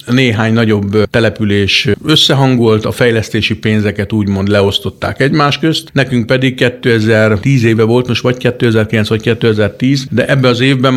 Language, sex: Hungarian, male